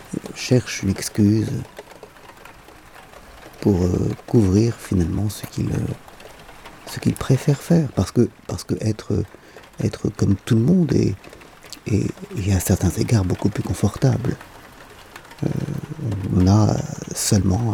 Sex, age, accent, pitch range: male, 50-69, French, 95-120 Hz